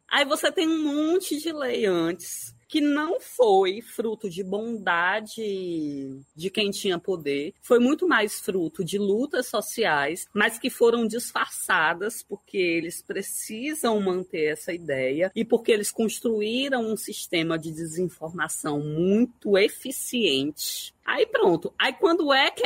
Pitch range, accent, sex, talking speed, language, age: 190-280 Hz, Brazilian, female, 135 wpm, Portuguese, 20-39